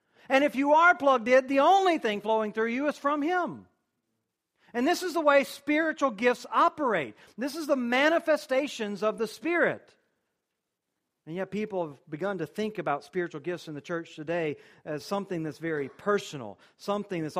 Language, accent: English, American